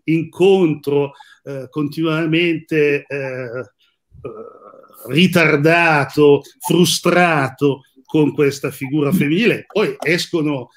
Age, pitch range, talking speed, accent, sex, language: 50-69, 130-155 Hz, 65 wpm, native, male, Italian